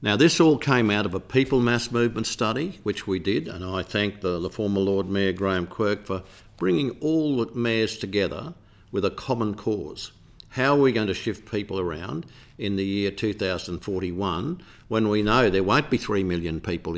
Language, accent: English, Australian